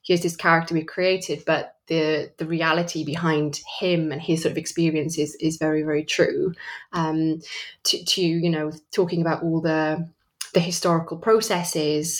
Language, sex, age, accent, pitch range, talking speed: English, female, 20-39, British, 160-180 Hz, 155 wpm